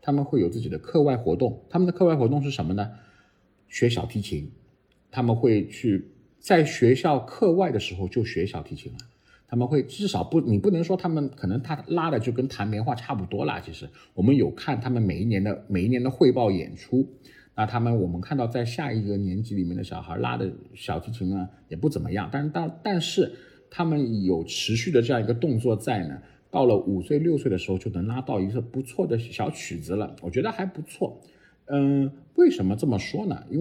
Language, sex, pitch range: Chinese, male, 100-140 Hz